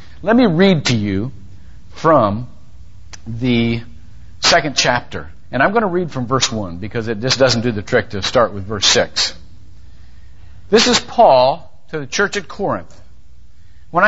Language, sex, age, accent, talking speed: English, male, 50-69, American, 160 wpm